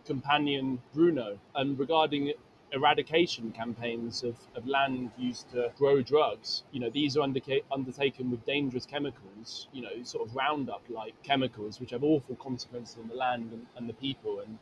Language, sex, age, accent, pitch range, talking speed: English, male, 20-39, British, 125-140 Hz, 165 wpm